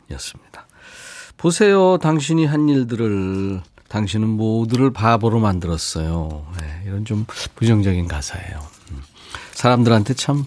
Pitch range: 95-130 Hz